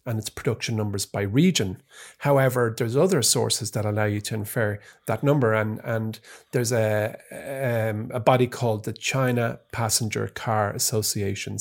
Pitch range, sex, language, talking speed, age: 110-135 Hz, male, English, 155 wpm, 30-49